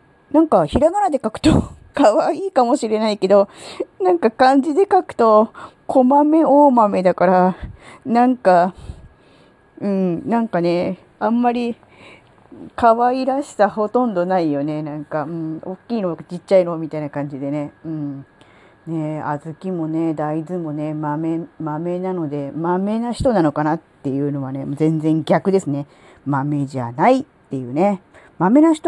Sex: female